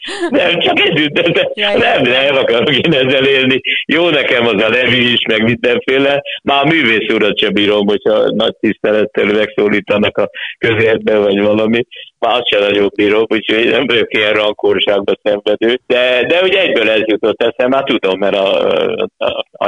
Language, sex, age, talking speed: Hungarian, male, 60-79, 165 wpm